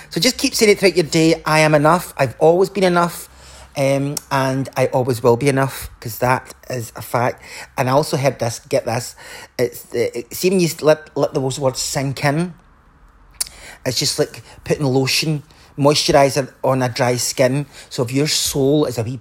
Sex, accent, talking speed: male, British, 185 wpm